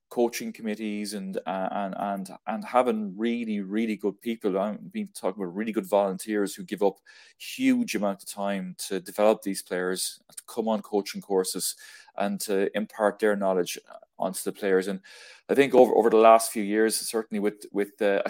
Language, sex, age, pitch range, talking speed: English, male, 20-39, 100-110 Hz, 185 wpm